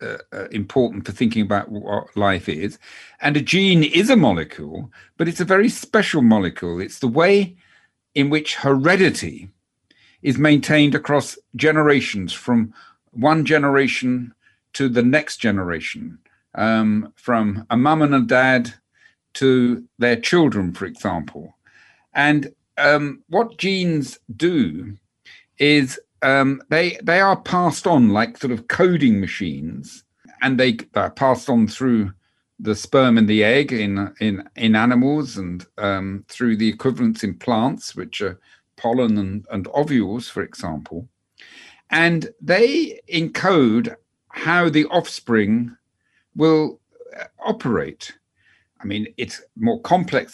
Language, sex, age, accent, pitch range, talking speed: English, male, 50-69, British, 110-155 Hz, 130 wpm